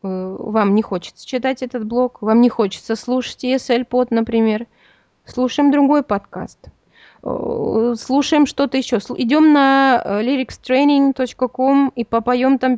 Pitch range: 215-260 Hz